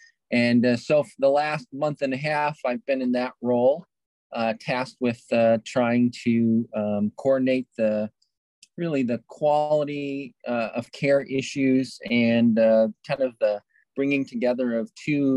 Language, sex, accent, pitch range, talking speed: English, male, American, 110-130 Hz, 155 wpm